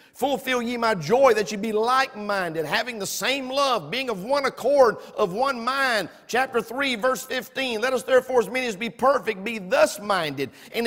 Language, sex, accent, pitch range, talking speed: English, male, American, 205-260 Hz, 190 wpm